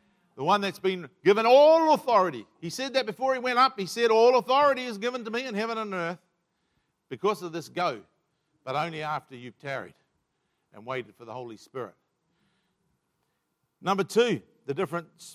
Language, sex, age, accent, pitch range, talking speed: English, male, 50-69, Australian, 170-235 Hz, 175 wpm